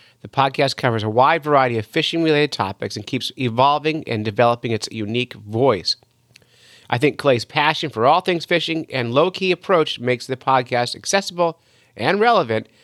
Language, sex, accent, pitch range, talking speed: English, male, American, 110-145 Hz, 160 wpm